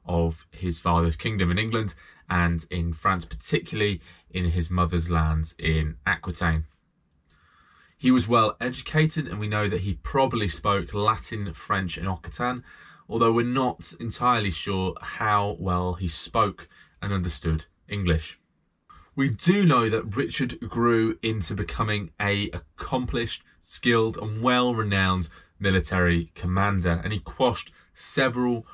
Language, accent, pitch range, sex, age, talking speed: English, British, 85-105 Hz, male, 20-39, 130 wpm